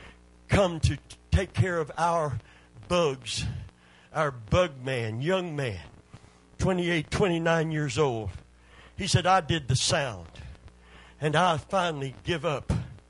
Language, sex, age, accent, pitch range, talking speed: English, male, 60-79, American, 130-175 Hz, 125 wpm